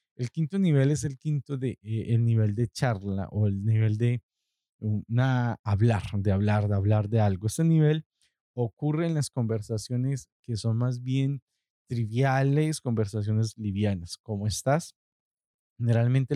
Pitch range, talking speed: 105-125 Hz, 145 wpm